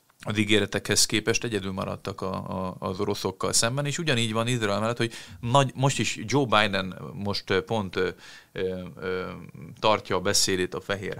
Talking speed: 135 wpm